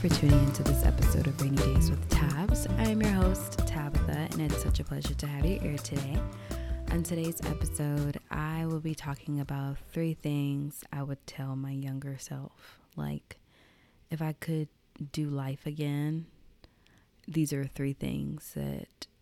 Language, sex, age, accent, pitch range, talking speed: English, female, 20-39, American, 135-150 Hz, 165 wpm